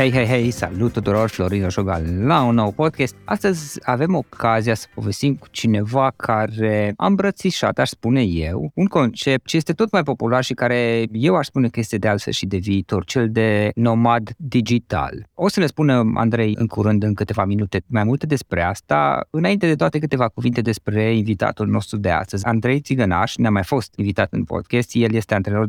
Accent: native